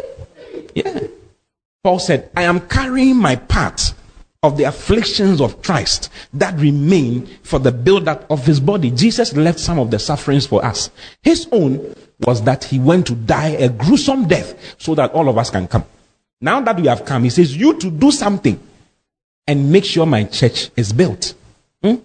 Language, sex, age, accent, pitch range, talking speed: English, male, 40-59, Nigerian, 160-255 Hz, 180 wpm